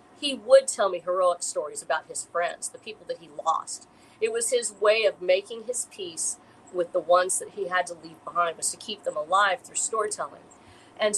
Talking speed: 210 wpm